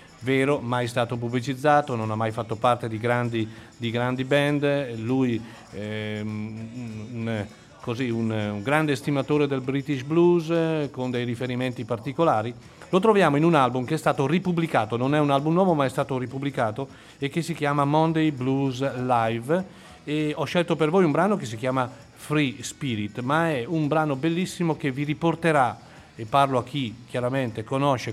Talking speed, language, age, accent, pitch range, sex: 165 wpm, Italian, 40-59, native, 120-155 Hz, male